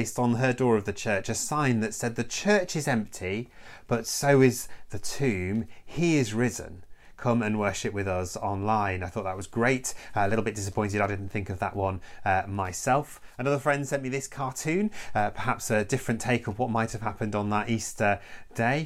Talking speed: 205 wpm